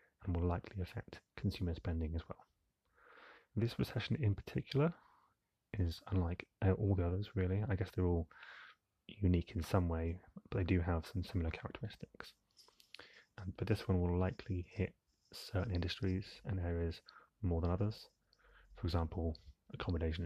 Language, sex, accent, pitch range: English, male, British, 85-100 Hz